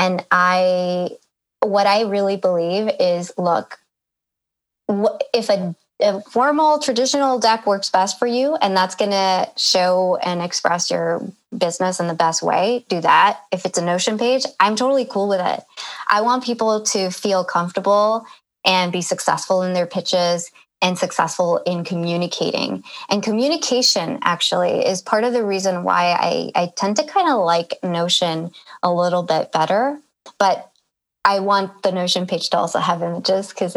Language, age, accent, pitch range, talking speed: English, 20-39, American, 180-215 Hz, 160 wpm